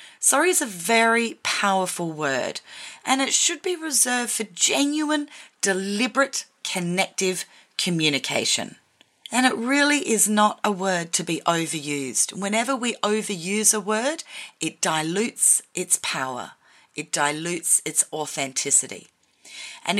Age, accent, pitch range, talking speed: 40-59, Australian, 170-245 Hz, 120 wpm